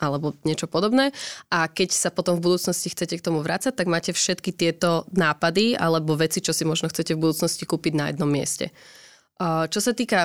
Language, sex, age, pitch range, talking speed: Slovak, female, 20-39, 160-185 Hz, 195 wpm